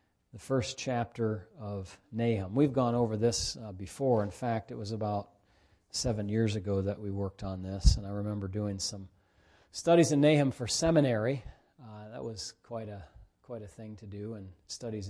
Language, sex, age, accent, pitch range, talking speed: English, male, 40-59, American, 100-120 Hz, 185 wpm